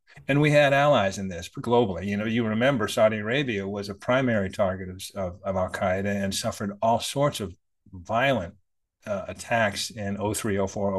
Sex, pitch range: male, 100-120 Hz